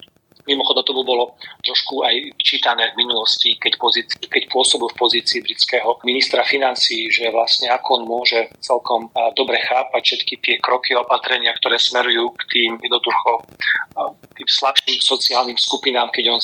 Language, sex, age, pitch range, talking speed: Slovak, male, 40-59, 120-145 Hz, 140 wpm